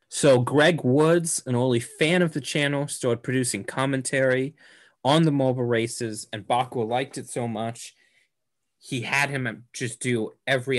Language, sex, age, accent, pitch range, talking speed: English, male, 20-39, American, 115-145 Hz, 155 wpm